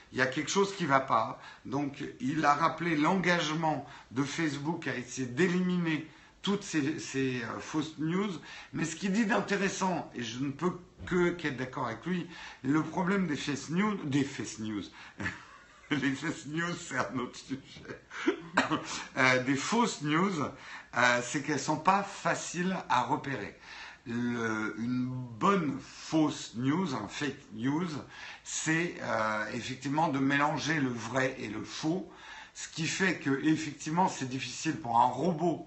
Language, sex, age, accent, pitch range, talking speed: French, male, 60-79, French, 130-170 Hz, 140 wpm